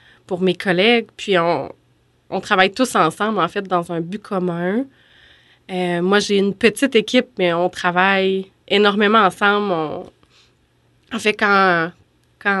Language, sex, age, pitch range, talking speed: French, female, 20-39, 180-220 Hz, 150 wpm